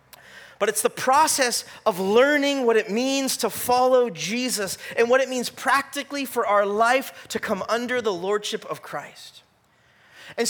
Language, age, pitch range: English, 30-49, 195-270 Hz